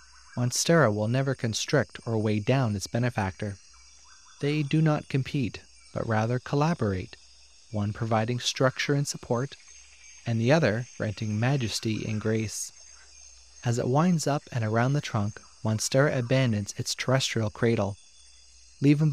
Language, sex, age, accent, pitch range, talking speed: English, male, 30-49, American, 105-140 Hz, 130 wpm